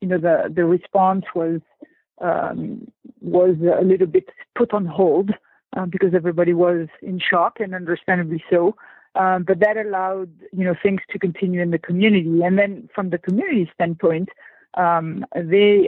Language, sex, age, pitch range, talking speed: English, female, 50-69, 175-195 Hz, 165 wpm